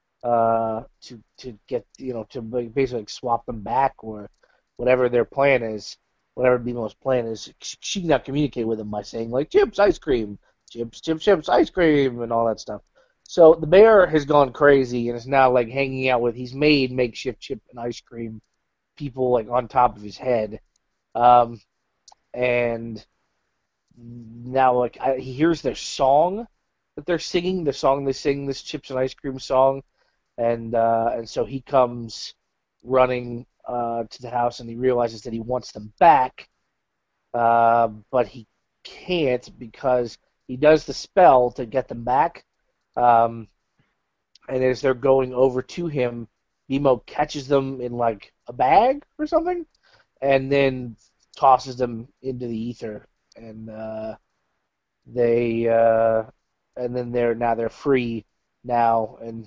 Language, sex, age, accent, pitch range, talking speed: English, male, 30-49, American, 115-135 Hz, 160 wpm